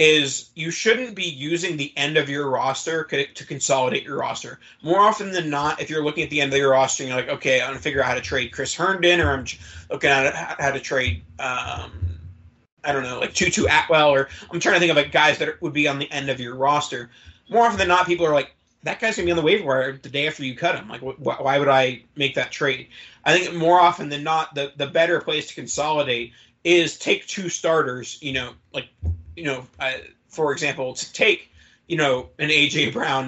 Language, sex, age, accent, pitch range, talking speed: English, male, 30-49, American, 135-165 Hz, 240 wpm